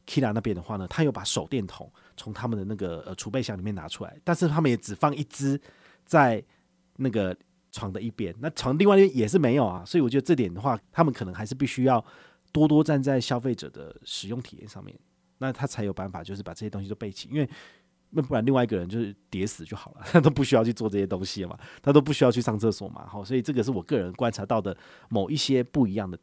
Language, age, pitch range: Chinese, 30-49, 100-140 Hz